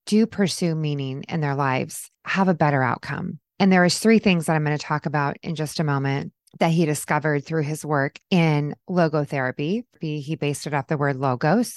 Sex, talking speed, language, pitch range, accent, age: female, 205 wpm, English, 145-175 Hz, American, 20-39